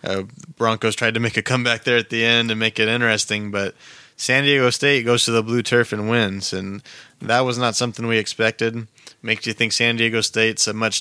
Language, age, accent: English, 20-39, American